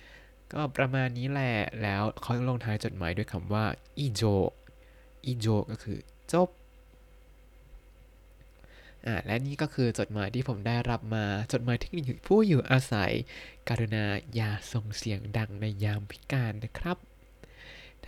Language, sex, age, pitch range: Thai, male, 20-39, 110-135 Hz